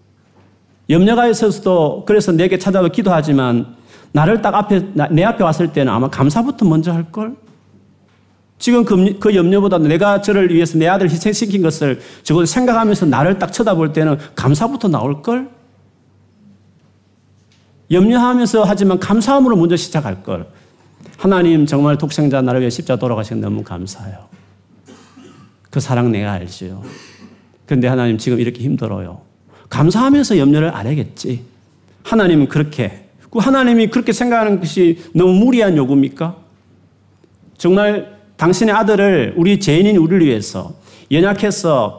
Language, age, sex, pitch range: Korean, 40-59, male, 130-195 Hz